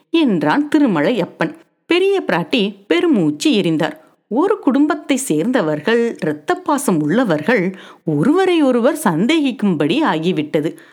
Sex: female